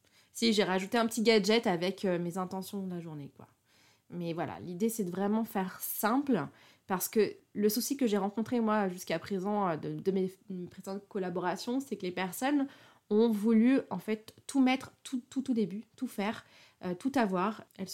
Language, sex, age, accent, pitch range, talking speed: French, female, 20-39, French, 180-220 Hz, 195 wpm